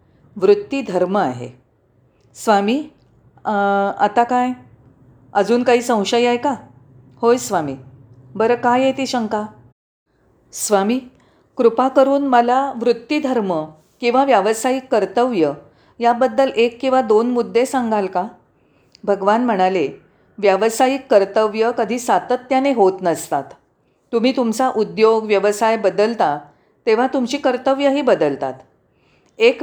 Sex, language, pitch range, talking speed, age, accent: female, Marathi, 155-245 Hz, 110 wpm, 40-59, native